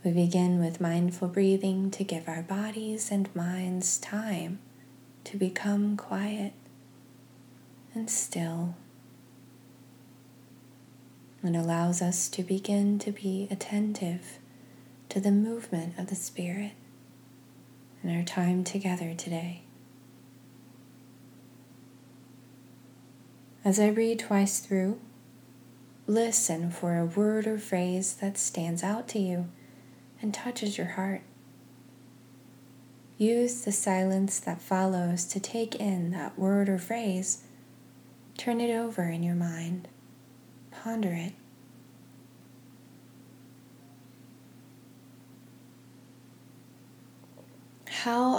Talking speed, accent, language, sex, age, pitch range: 95 wpm, American, English, female, 20-39, 130-200 Hz